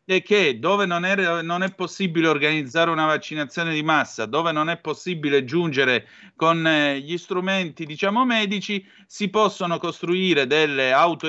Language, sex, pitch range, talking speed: Italian, male, 130-170 Hz, 150 wpm